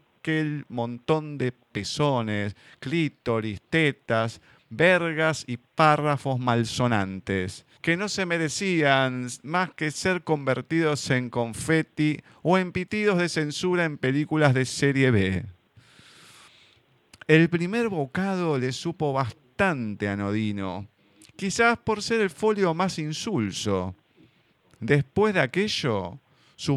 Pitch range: 115-155 Hz